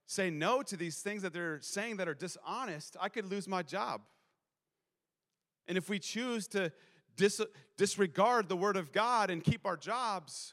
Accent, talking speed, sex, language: American, 170 wpm, male, English